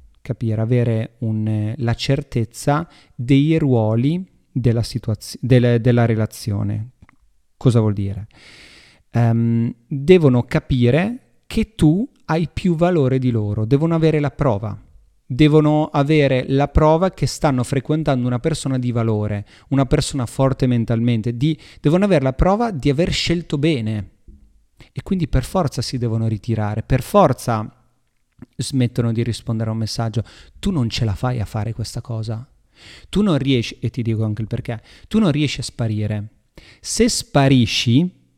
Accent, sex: native, male